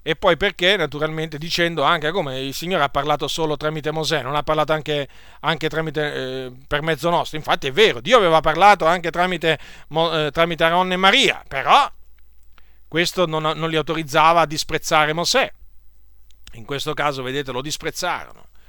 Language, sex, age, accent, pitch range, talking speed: Italian, male, 40-59, native, 145-175 Hz, 165 wpm